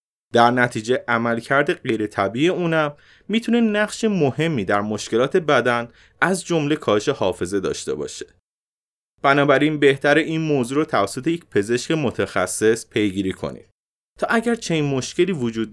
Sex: male